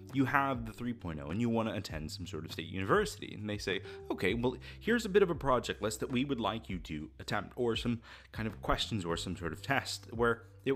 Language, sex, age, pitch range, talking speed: English, male, 30-49, 95-130 Hz, 250 wpm